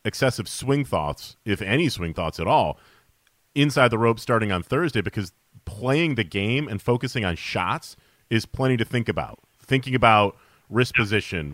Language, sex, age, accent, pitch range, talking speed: English, male, 30-49, American, 100-125 Hz, 165 wpm